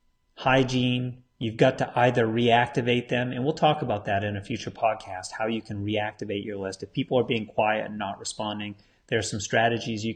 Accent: American